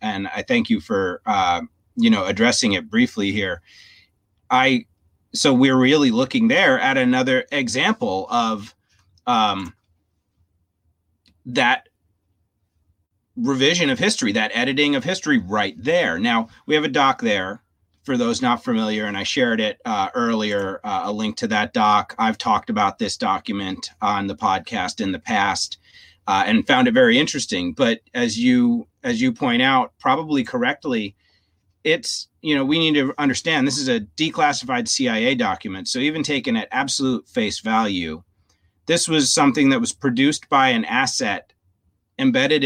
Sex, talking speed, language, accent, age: male, 155 wpm, English, American, 30-49